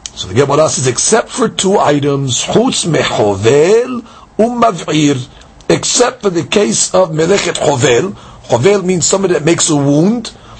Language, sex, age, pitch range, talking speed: English, male, 50-69, 155-210 Hz, 125 wpm